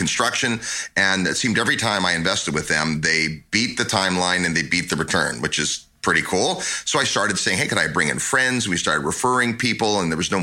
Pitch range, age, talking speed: 90-115 Hz, 30-49, 235 wpm